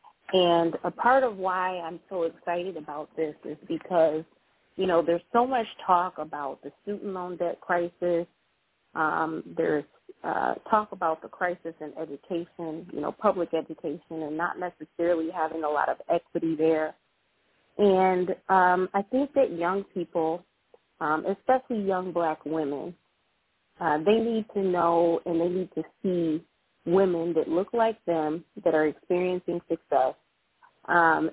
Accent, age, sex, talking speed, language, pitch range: American, 30-49, female, 150 wpm, English, 165-200 Hz